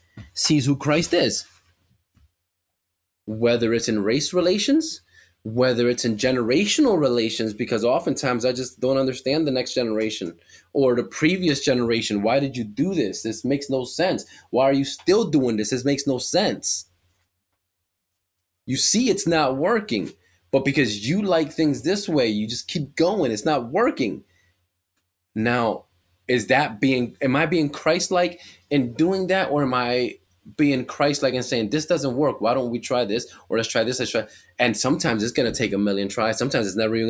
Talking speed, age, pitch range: 180 wpm, 20-39, 90-130 Hz